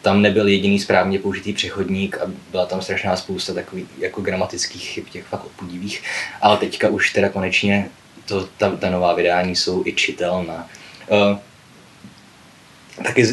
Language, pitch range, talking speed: Czech, 100-110 Hz, 145 wpm